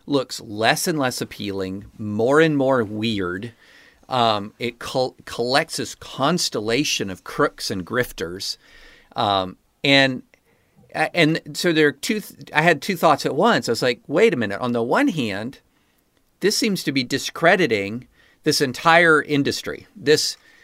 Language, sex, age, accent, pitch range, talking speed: English, male, 50-69, American, 120-175 Hz, 150 wpm